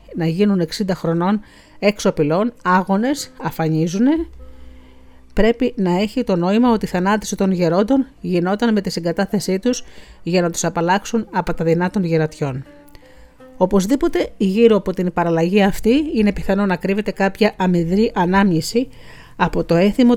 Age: 40-59